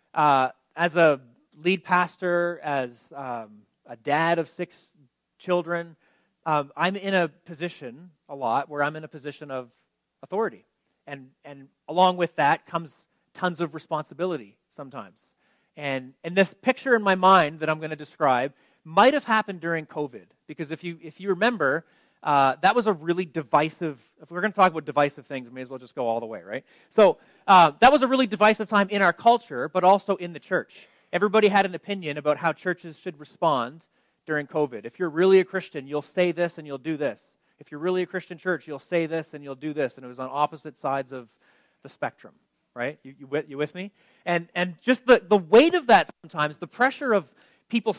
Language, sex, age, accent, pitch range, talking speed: English, male, 30-49, American, 150-185 Hz, 210 wpm